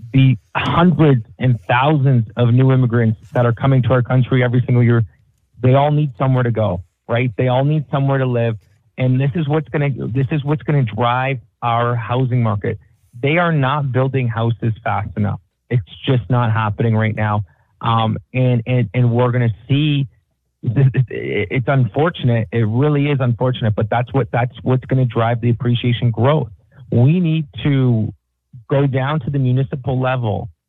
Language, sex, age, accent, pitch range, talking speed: English, male, 30-49, American, 115-130 Hz, 180 wpm